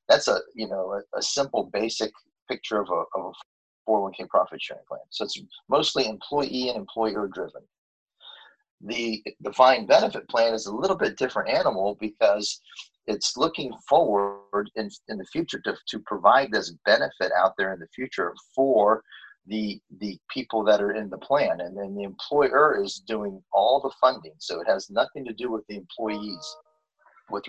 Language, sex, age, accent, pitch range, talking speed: English, male, 30-49, American, 105-130 Hz, 175 wpm